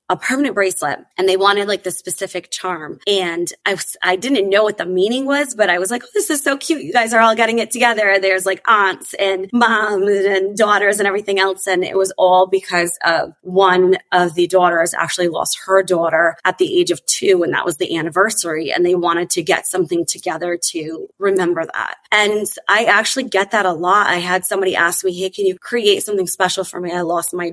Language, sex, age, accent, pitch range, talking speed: English, female, 20-39, American, 175-215 Hz, 225 wpm